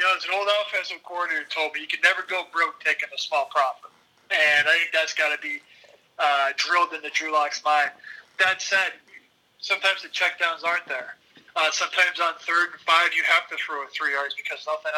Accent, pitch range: American, 150-180 Hz